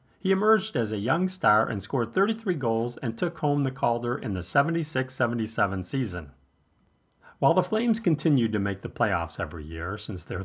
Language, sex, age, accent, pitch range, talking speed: English, male, 40-59, American, 100-150 Hz, 180 wpm